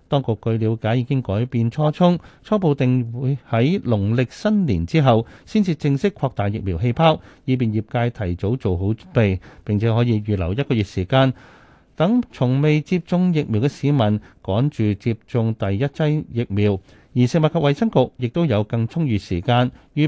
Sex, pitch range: male, 105-145 Hz